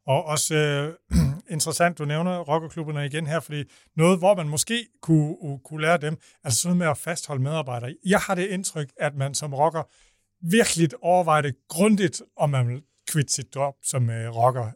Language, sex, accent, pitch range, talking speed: Danish, male, native, 135-190 Hz, 185 wpm